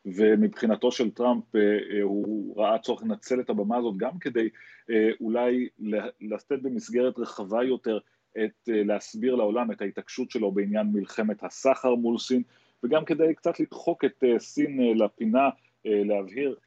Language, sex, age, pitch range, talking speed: Hebrew, male, 30-49, 105-125 Hz, 130 wpm